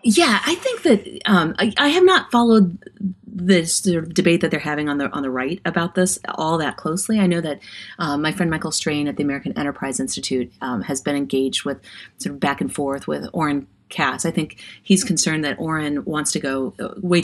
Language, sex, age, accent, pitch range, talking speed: English, female, 30-49, American, 150-225 Hz, 220 wpm